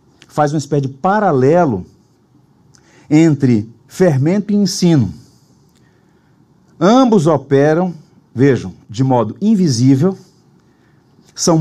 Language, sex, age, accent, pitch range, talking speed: Portuguese, male, 50-69, Brazilian, 135-185 Hz, 85 wpm